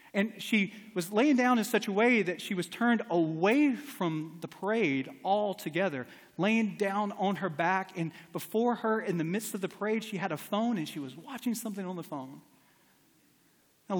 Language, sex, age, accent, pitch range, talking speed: English, male, 30-49, American, 175-240 Hz, 195 wpm